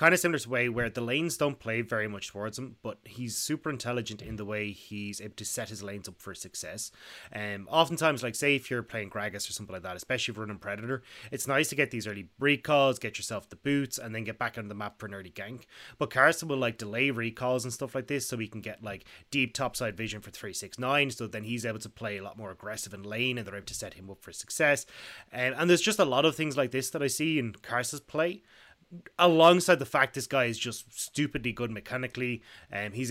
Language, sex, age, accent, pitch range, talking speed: English, male, 20-39, Irish, 110-140 Hz, 250 wpm